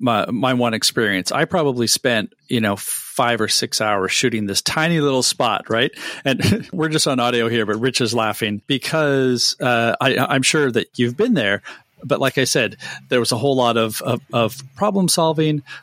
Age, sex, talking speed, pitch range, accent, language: 40-59, male, 195 wpm, 115-140 Hz, American, English